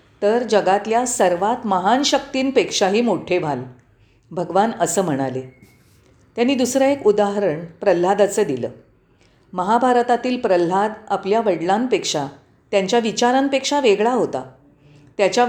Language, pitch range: Marathi, 145-230 Hz